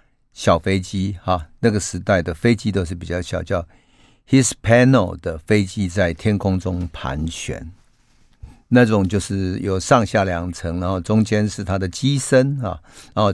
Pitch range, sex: 90-120 Hz, male